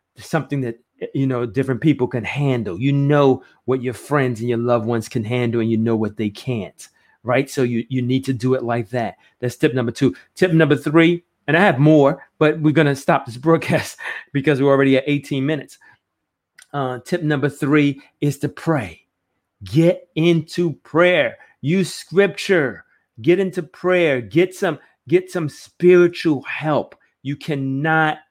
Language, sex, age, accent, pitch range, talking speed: English, male, 30-49, American, 130-165 Hz, 175 wpm